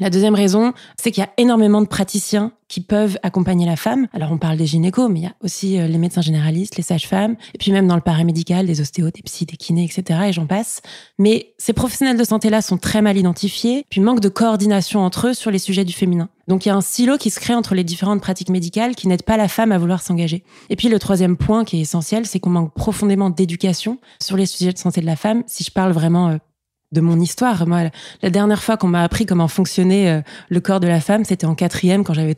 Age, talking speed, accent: 20-39, 255 wpm, French